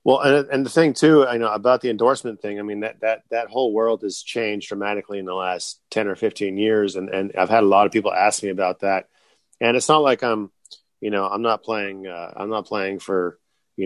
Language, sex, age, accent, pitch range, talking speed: English, male, 30-49, American, 95-115 Hz, 245 wpm